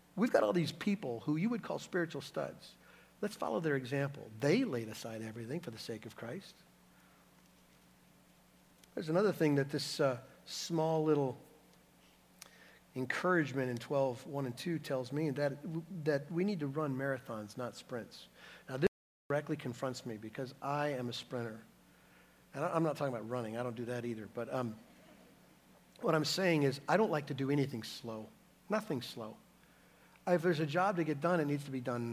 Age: 50-69